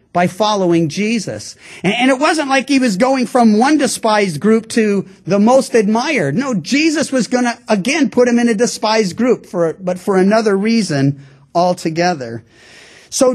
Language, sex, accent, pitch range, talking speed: English, male, American, 160-235 Hz, 170 wpm